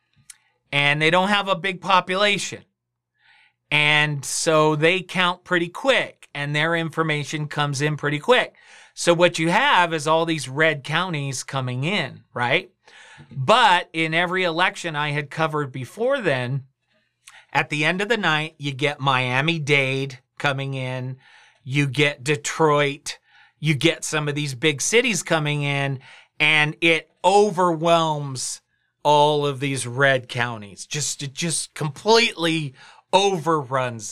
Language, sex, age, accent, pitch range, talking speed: English, male, 40-59, American, 140-180 Hz, 135 wpm